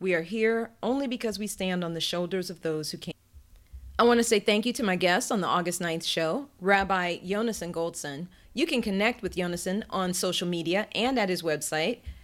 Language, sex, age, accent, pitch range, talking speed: English, female, 40-59, American, 170-220 Hz, 210 wpm